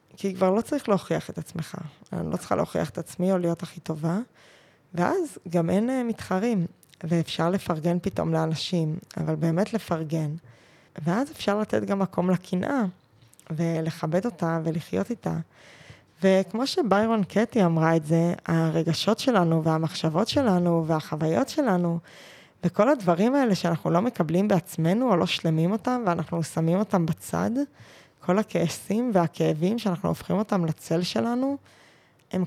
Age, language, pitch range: 20-39, Hebrew, 165-205 Hz